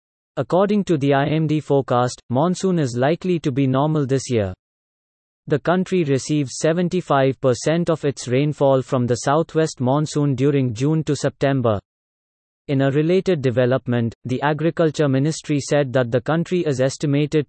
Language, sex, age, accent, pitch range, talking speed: English, male, 30-49, Indian, 130-160 Hz, 140 wpm